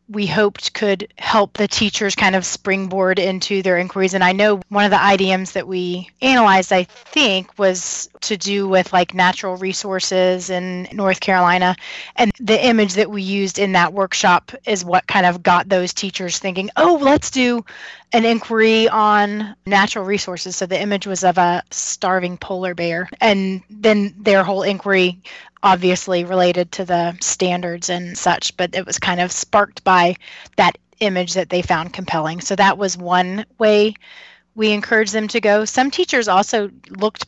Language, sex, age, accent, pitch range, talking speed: English, female, 20-39, American, 180-210 Hz, 170 wpm